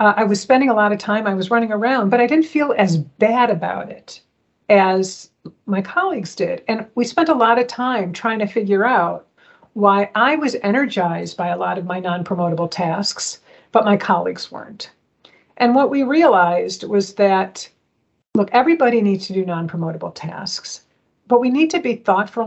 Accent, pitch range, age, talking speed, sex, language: American, 195-235 Hz, 50-69, 185 wpm, female, English